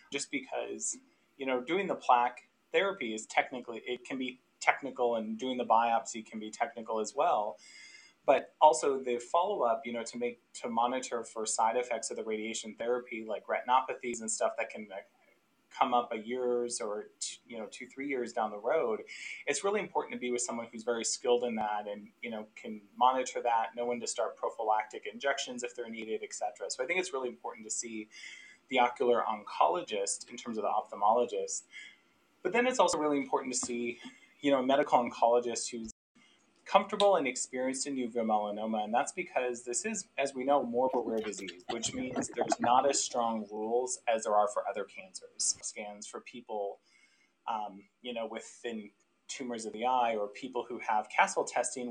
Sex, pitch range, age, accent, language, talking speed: male, 115-135 Hz, 20-39, American, English, 195 wpm